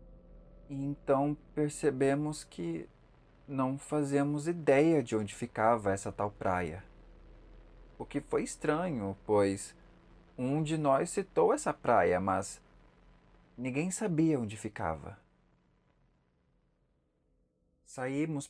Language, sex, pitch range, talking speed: Portuguese, male, 95-140 Hz, 95 wpm